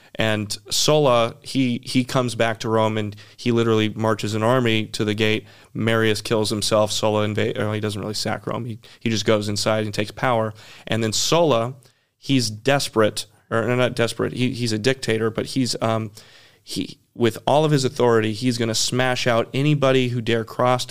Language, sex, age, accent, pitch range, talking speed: English, male, 30-49, American, 110-125 Hz, 190 wpm